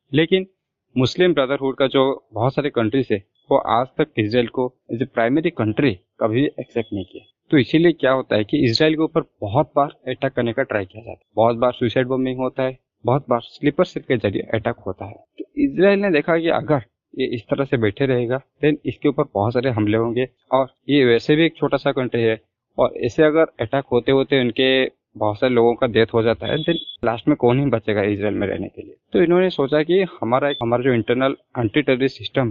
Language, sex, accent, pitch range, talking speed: Hindi, male, native, 115-150 Hz, 220 wpm